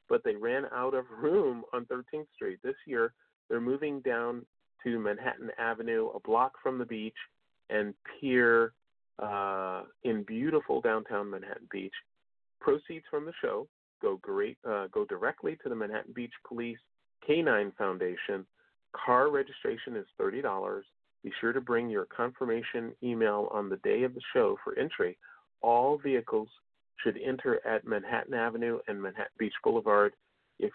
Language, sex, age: English, male, 40-59